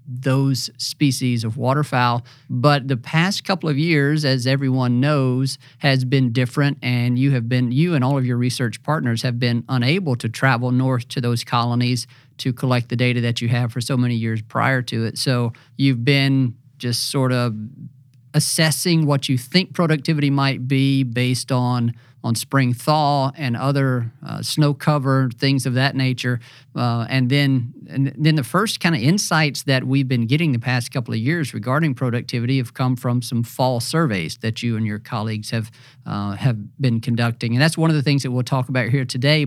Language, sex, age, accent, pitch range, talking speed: English, male, 40-59, American, 125-145 Hz, 190 wpm